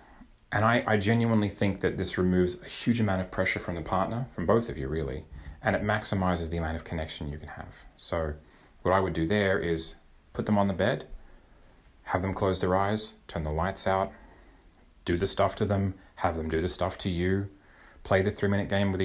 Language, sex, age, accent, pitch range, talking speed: English, male, 30-49, Australian, 80-105 Hz, 220 wpm